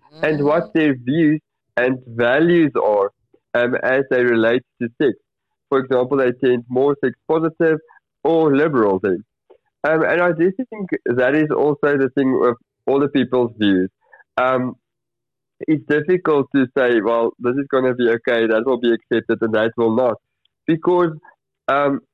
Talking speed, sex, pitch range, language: 165 wpm, male, 120-155 Hz, English